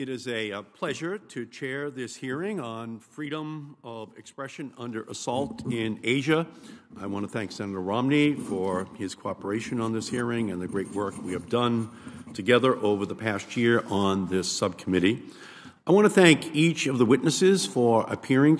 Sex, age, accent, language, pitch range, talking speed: male, 50-69, American, English, 110-140 Hz, 170 wpm